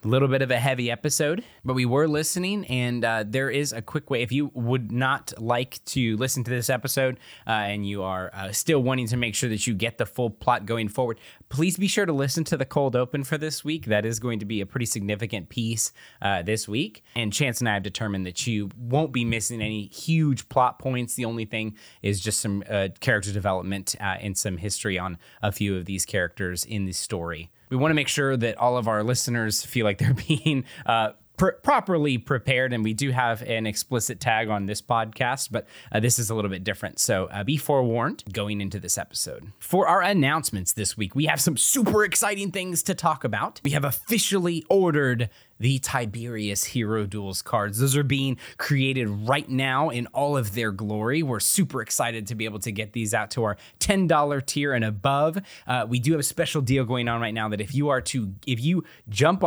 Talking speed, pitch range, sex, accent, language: 220 wpm, 110-140 Hz, male, American, English